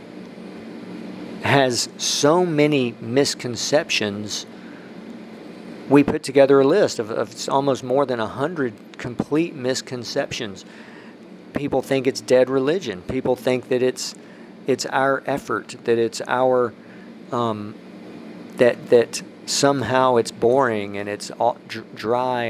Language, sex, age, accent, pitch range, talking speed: English, male, 50-69, American, 115-140 Hz, 115 wpm